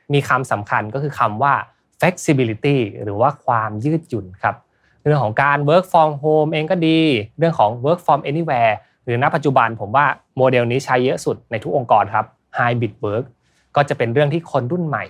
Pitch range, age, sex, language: 115-155 Hz, 20-39, male, Thai